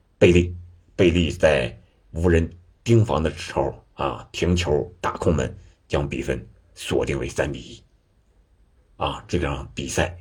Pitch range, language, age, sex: 85-115 Hz, Chinese, 60-79, male